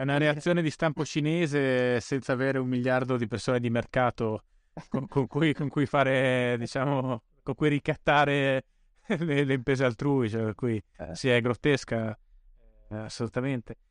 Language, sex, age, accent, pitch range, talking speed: Italian, male, 20-39, native, 120-150 Hz, 145 wpm